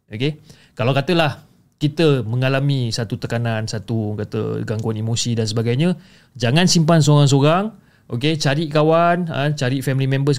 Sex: male